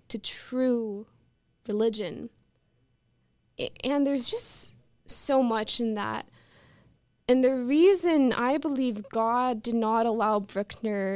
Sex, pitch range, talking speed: female, 215-255 Hz, 115 wpm